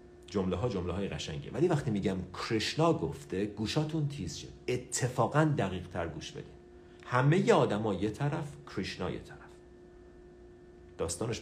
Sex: male